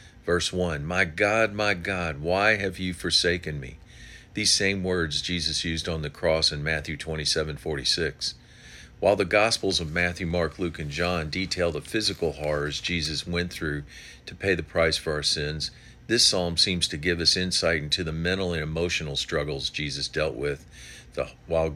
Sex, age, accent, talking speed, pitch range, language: male, 50-69, American, 175 wpm, 75-95 Hz, English